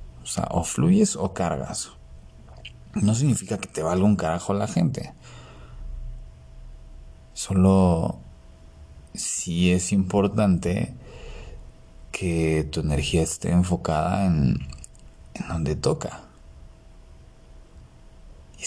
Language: Spanish